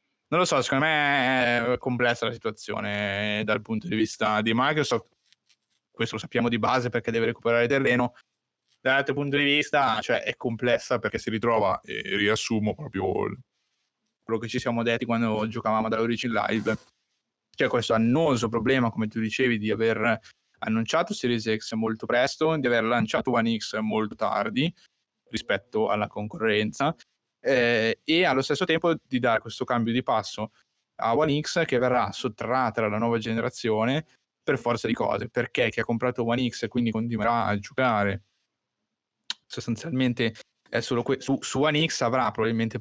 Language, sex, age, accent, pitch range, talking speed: Italian, male, 20-39, native, 110-130 Hz, 165 wpm